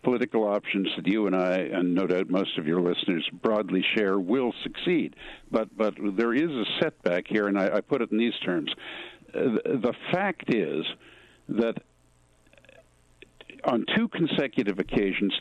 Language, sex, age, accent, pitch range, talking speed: English, male, 60-79, American, 95-115 Hz, 165 wpm